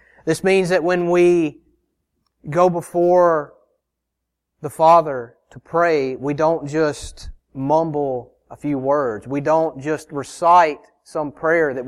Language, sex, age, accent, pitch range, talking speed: English, male, 30-49, American, 120-155 Hz, 125 wpm